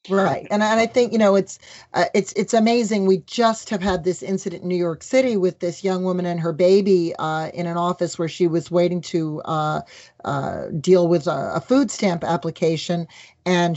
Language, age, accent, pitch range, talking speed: English, 40-59, American, 175-220 Hz, 210 wpm